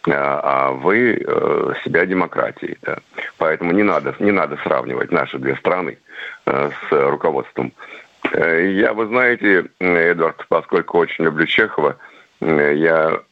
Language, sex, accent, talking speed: Russian, male, native, 110 wpm